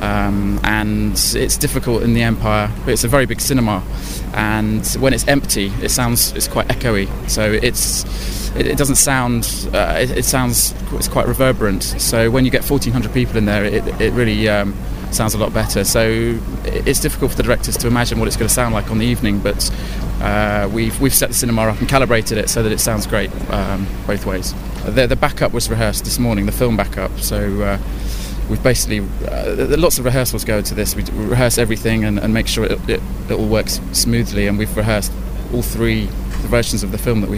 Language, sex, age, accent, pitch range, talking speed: English, male, 20-39, British, 105-120 Hz, 210 wpm